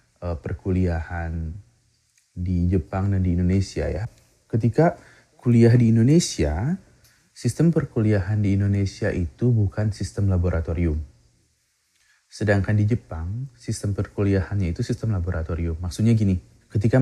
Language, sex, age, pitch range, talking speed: Indonesian, male, 30-49, 100-125 Hz, 105 wpm